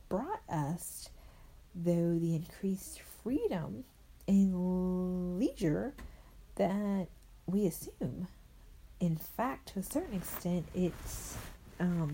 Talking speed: 95 wpm